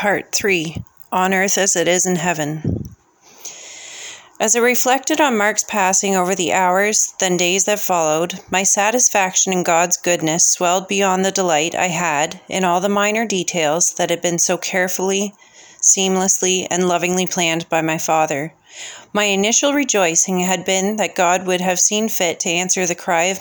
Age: 30-49